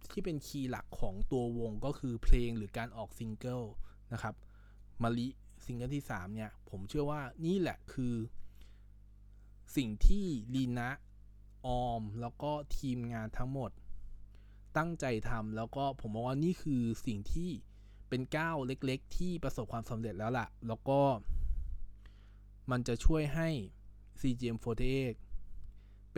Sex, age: male, 20-39